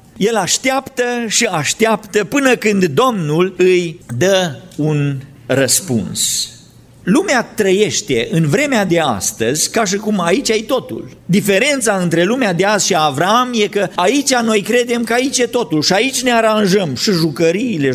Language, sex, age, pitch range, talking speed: Romanian, male, 50-69, 145-230 Hz, 150 wpm